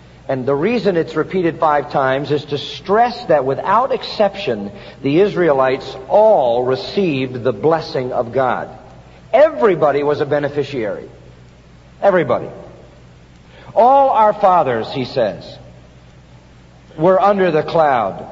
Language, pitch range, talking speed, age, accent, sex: English, 135-200 Hz, 115 wpm, 50-69, American, male